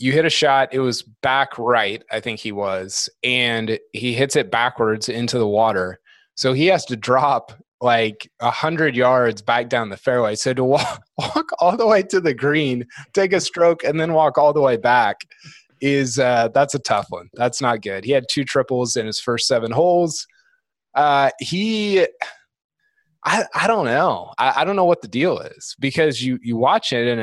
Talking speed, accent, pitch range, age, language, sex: 200 wpm, American, 120-155 Hz, 20-39, English, male